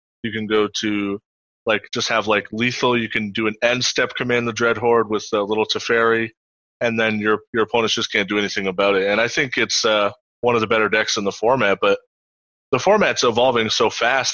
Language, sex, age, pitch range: English, male, 20-39, 105-125 Hz